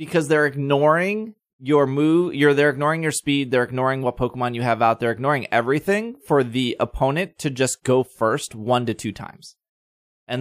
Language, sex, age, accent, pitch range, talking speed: English, male, 20-39, American, 120-160 Hz, 185 wpm